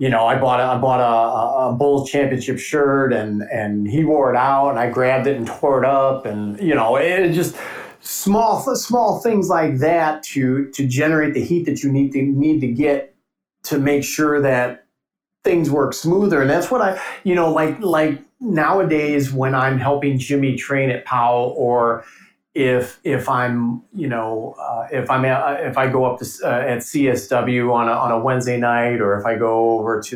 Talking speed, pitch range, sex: 200 wpm, 120-150 Hz, male